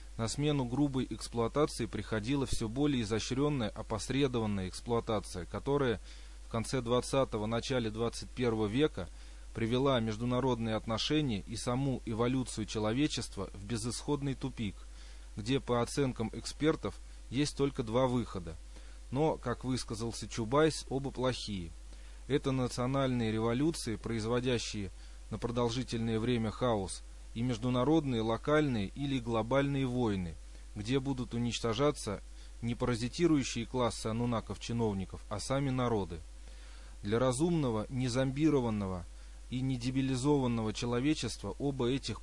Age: 20-39